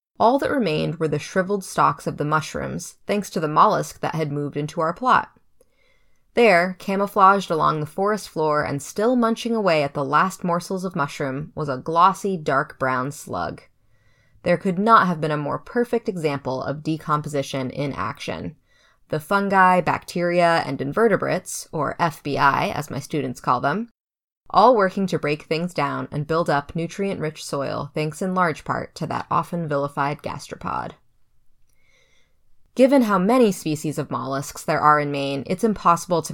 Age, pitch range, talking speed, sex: 20-39, 145-190 Hz, 165 wpm, female